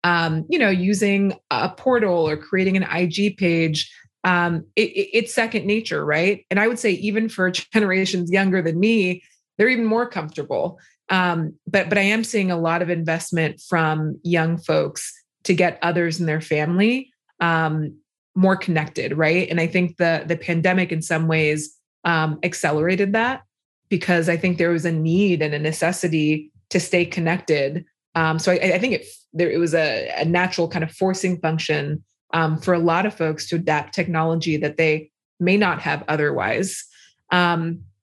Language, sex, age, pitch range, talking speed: English, female, 20-39, 160-190 Hz, 175 wpm